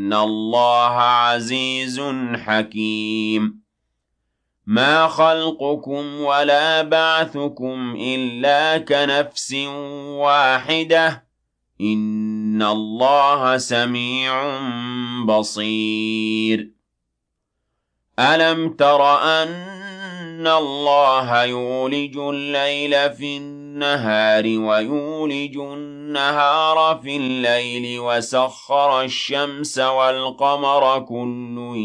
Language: Arabic